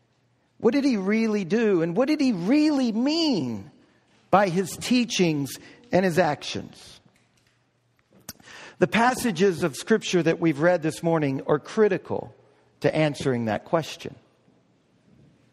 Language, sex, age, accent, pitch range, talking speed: English, male, 50-69, American, 185-240 Hz, 125 wpm